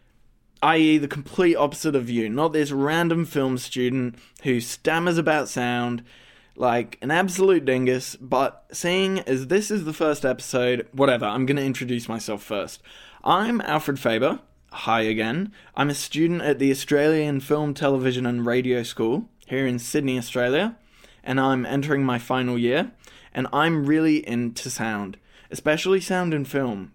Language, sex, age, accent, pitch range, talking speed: English, male, 20-39, Australian, 120-150 Hz, 155 wpm